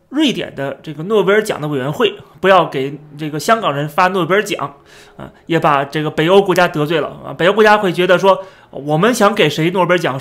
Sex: male